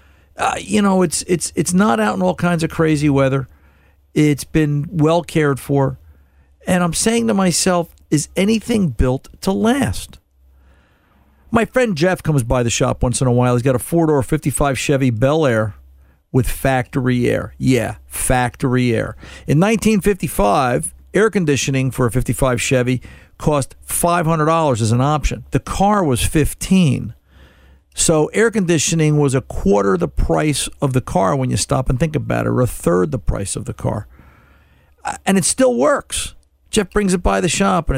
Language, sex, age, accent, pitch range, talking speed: English, male, 50-69, American, 115-165 Hz, 170 wpm